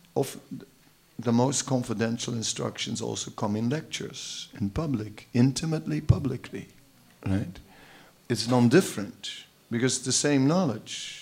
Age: 50-69